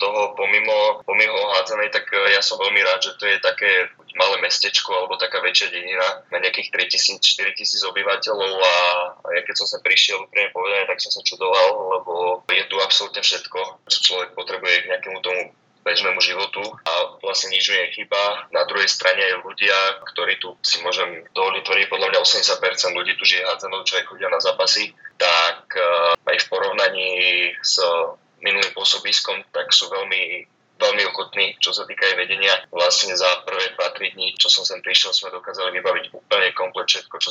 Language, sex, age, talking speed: Slovak, male, 20-39, 175 wpm